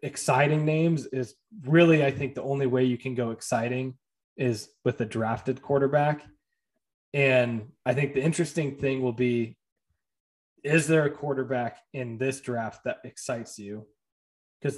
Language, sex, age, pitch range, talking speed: English, male, 20-39, 120-140 Hz, 150 wpm